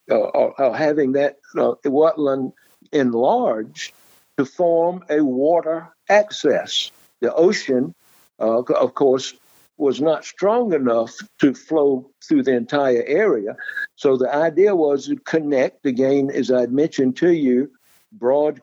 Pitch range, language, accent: 130-170 Hz, English, American